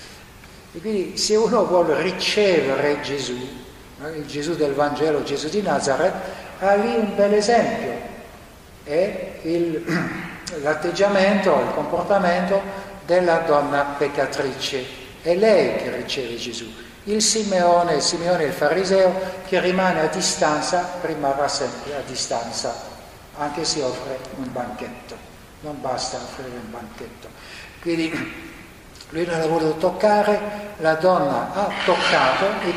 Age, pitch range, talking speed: 60-79, 135-180 Hz, 125 wpm